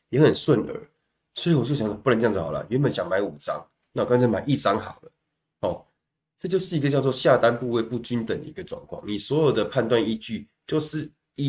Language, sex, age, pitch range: Chinese, male, 20-39, 100-140 Hz